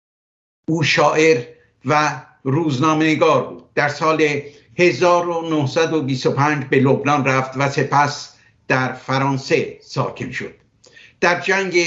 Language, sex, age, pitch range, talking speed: Persian, male, 60-79, 140-165 Hz, 95 wpm